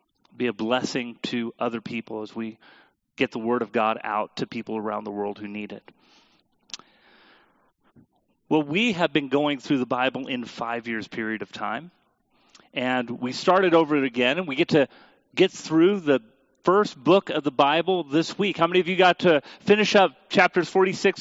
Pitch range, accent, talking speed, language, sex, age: 140-195 Hz, American, 185 wpm, English, male, 40-59